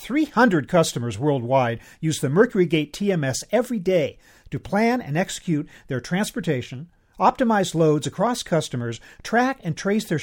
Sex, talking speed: male, 135 wpm